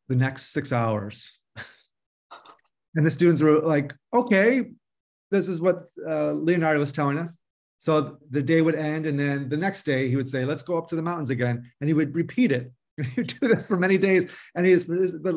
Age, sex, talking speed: 30-49, male, 205 wpm